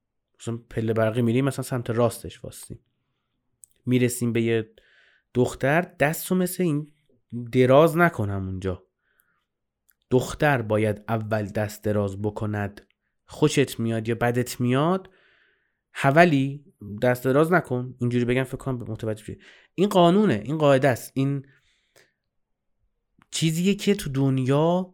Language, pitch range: Persian, 115-160 Hz